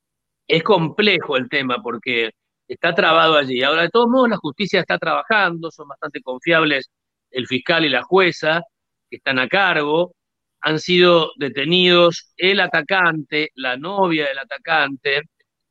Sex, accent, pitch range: male, Argentinian, 140-185 Hz